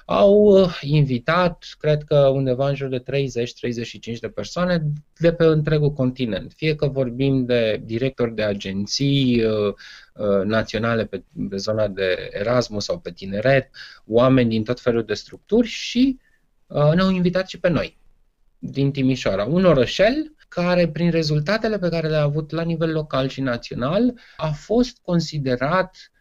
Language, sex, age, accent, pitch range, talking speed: Romanian, male, 20-39, native, 120-160 Hz, 145 wpm